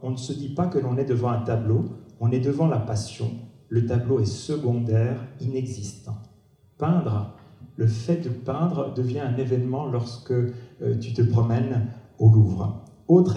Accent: French